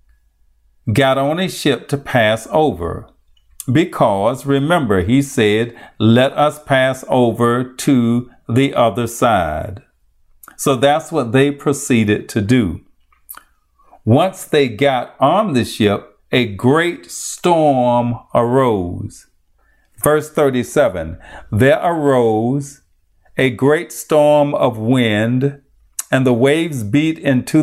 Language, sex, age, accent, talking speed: English, male, 50-69, American, 110 wpm